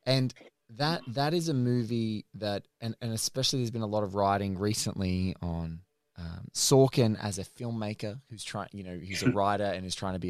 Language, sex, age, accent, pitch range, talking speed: English, male, 20-39, Australian, 95-120 Hz, 205 wpm